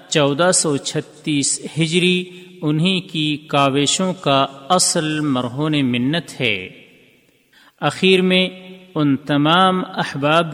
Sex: male